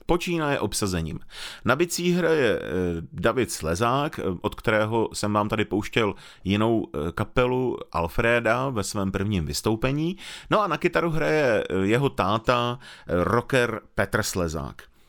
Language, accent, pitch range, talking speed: Czech, native, 100-135 Hz, 125 wpm